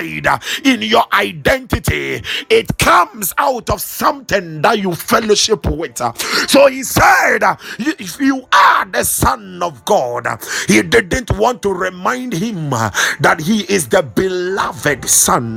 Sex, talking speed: male, 130 wpm